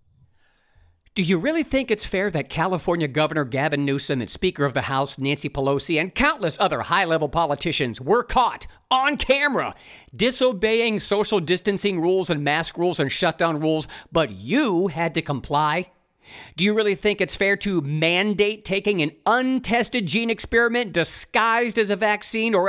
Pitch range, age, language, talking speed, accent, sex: 155-225 Hz, 50-69, English, 160 wpm, American, male